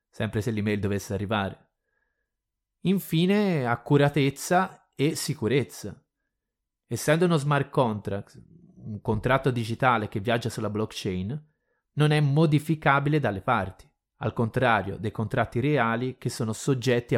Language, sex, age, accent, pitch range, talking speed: Italian, male, 30-49, native, 115-150 Hz, 115 wpm